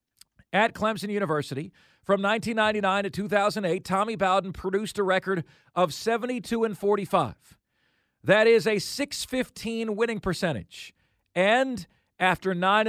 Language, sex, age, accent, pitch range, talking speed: English, male, 40-59, American, 185-235 Hz, 115 wpm